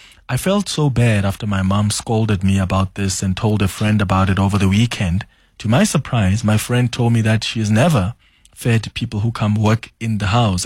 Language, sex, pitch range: English, male, 100-120 Hz